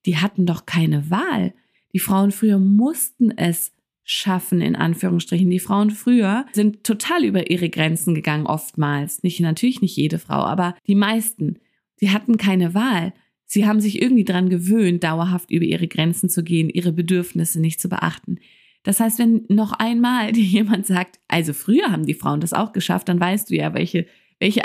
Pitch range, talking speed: 175-210 Hz, 180 wpm